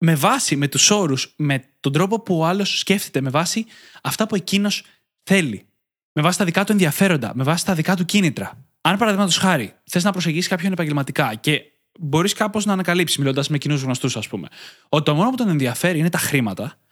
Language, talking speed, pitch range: Greek, 205 wpm, 140-190 Hz